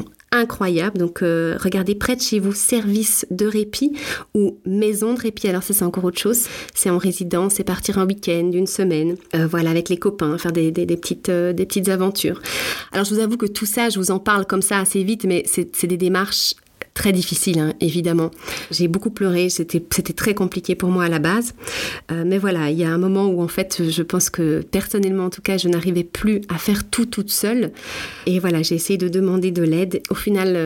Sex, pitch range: female, 175-210 Hz